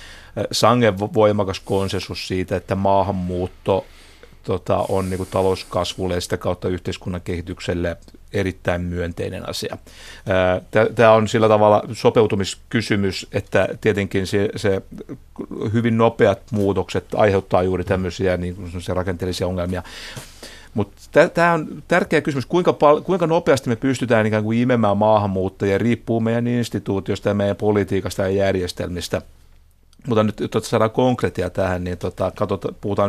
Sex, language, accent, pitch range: male, Finnish, native, 95-110 Hz